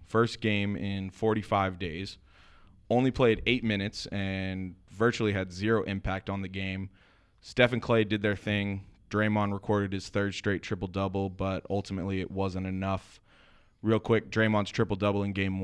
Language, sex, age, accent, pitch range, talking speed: English, male, 20-39, American, 95-105 Hz, 155 wpm